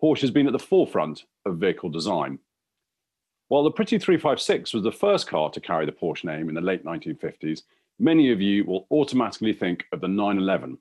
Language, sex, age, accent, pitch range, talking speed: English, male, 40-59, British, 95-145 Hz, 195 wpm